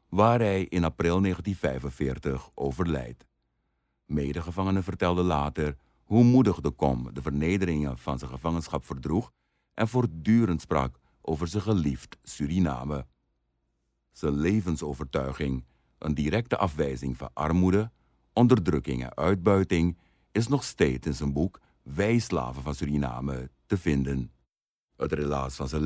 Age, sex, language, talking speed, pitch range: 50-69, male, Dutch, 120 wpm, 65-95 Hz